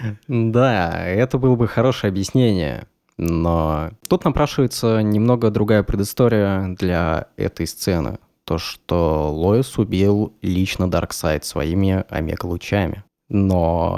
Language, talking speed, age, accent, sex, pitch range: Russian, 105 wpm, 20-39, native, male, 95-130 Hz